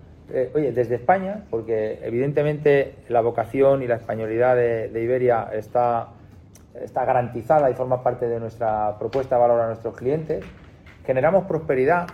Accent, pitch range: Spanish, 115-140 Hz